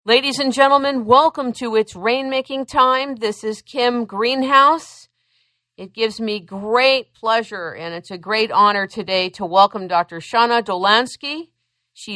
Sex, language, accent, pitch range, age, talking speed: female, English, American, 150-230 Hz, 50-69, 145 wpm